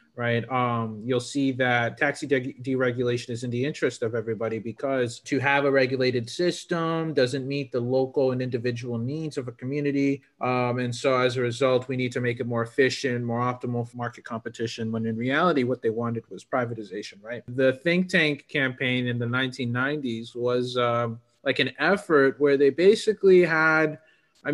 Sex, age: male, 30-49